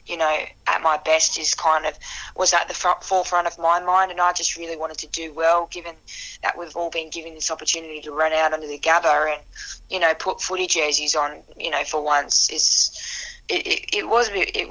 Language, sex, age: English, female, 10-29